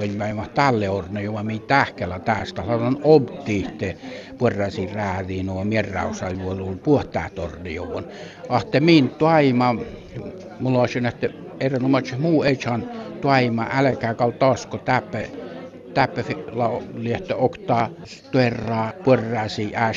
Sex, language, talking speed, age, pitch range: male, Finnish, 125 wpm, 60-79, 100-125 Hz